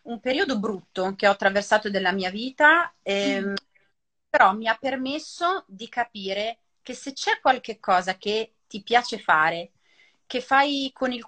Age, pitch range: 30-49, 195-250 Hz